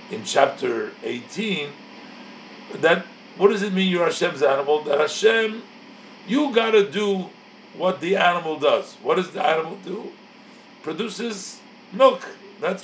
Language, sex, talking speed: English, male, 130 wpm